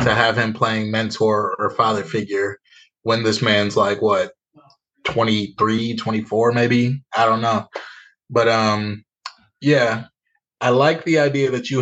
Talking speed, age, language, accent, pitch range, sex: 140 wpm, 20-39, English, American, 110-120 Hz, male